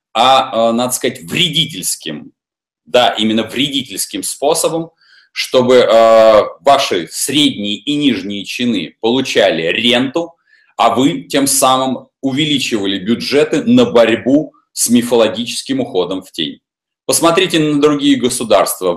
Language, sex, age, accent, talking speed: Russian, male, 30-49, native, 105 wpm